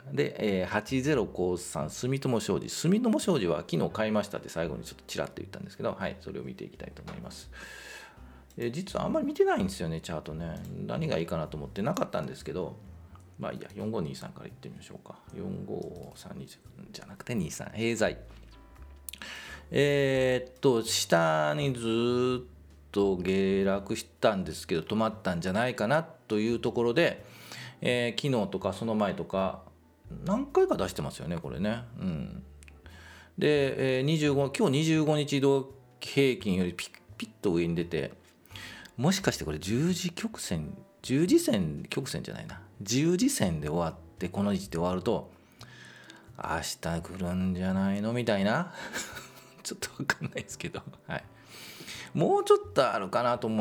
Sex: male